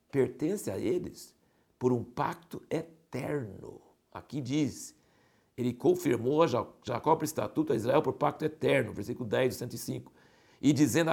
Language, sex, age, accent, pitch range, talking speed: Portuguese, male, 60-79, Brazilian, 140-200 Hz, 130 wpm